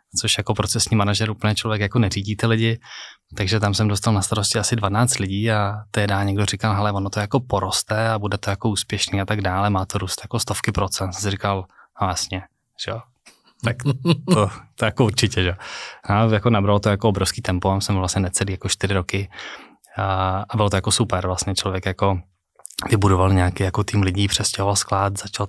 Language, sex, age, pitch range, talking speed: Czech, male, 20-39, 95-110 Hz, 195 wpm